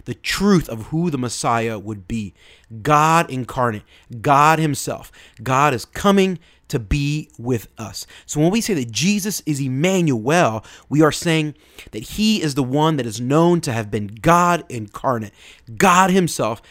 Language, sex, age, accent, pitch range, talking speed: English, male, 30-49, American, 110-160 Hz, 160 wpm